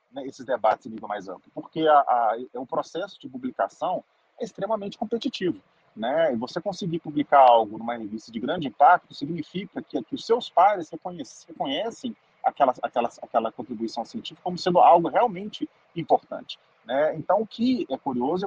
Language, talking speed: Portuguese, 170 wpm